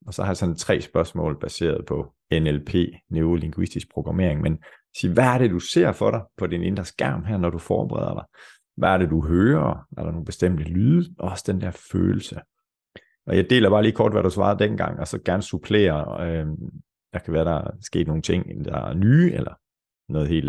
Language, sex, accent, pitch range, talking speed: Danish, male, native, 85-110 Hz, 215 wpm